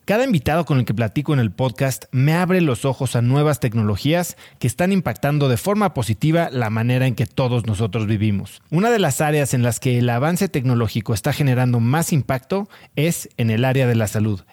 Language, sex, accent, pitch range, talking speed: Spanish, male, Mexican, 120-160 Hz, 205 wpm